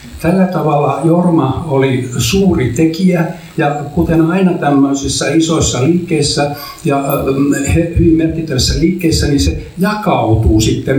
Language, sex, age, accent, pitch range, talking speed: Finnish, male, 60-79, native, 120-160 Hz, 110 wpm